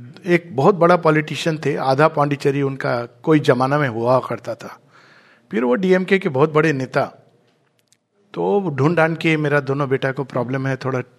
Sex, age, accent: male, 50-69, native